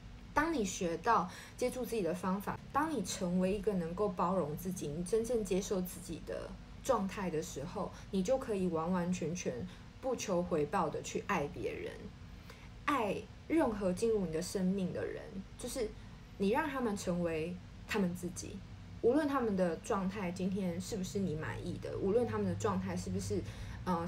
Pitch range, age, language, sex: 175-215 Hz, 20-39, Chinese, female